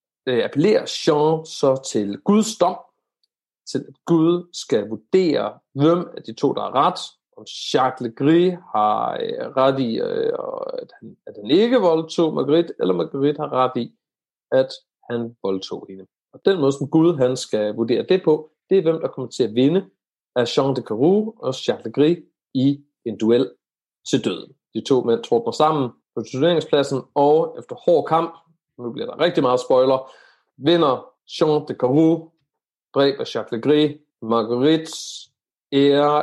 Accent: native